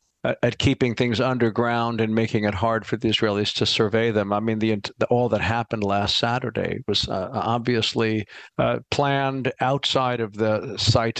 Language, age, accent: English, 50-69, American